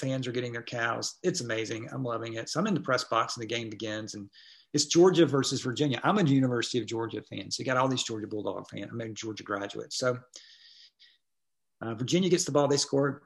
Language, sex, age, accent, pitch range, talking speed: English, male, 40-59, American, 115-145 Hz, 230 wpm